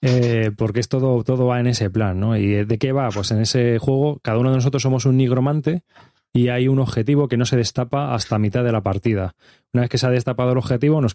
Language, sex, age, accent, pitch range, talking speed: Spanish, male, 20-39, Spanish, 115-135 Hz, 255 wpm